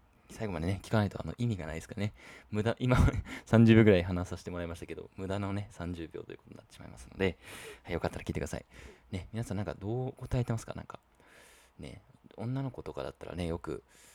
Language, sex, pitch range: Japanese, male, 80-115 Hz